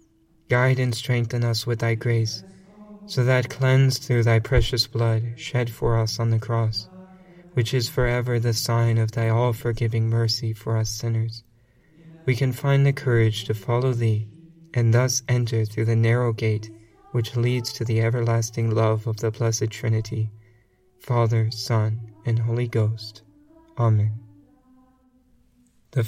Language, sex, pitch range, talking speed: English, male, 115-130 Hz, 145 wpm